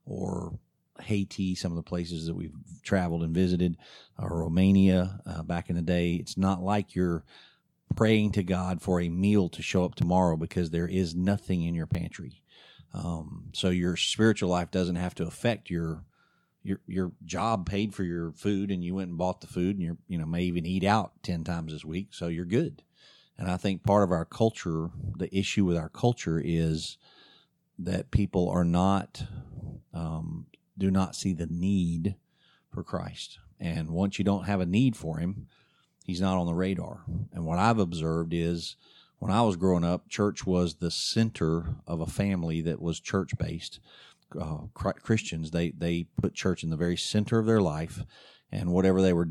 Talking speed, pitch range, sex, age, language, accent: 185 wpm, 85-95 Hz, male, 40-59, English, American